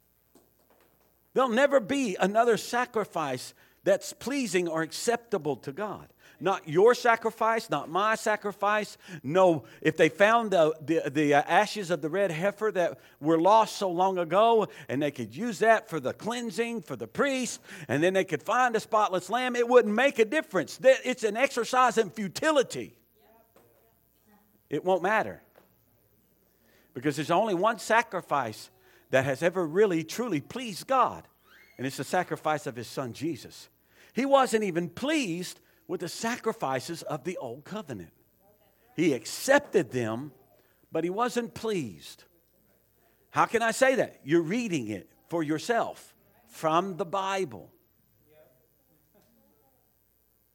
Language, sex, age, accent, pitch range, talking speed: English, male, 50-69, American, 160-230 Hz, 140 wpm